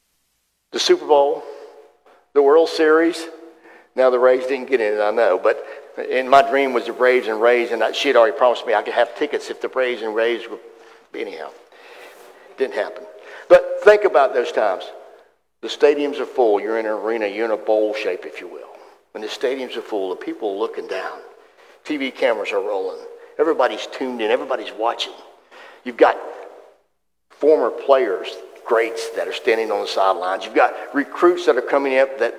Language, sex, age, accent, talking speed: English, male, 50-69, American, 190 wpm